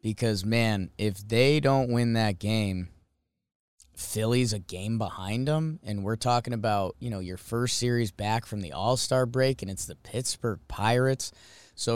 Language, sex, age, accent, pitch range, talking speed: English, male, 20-39, American, 105-135 Hz, 165 wpm